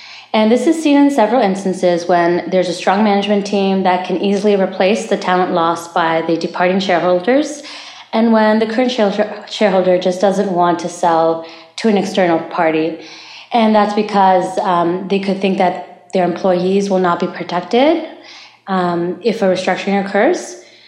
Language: English